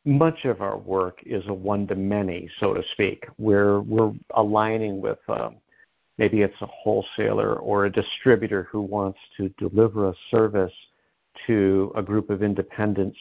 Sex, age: male, 50-69